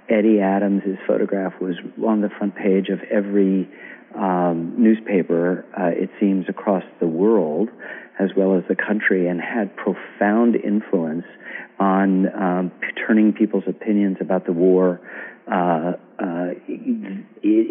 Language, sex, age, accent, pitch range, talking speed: English, male, 50-69, American, 90-100 Hz, 130 wpm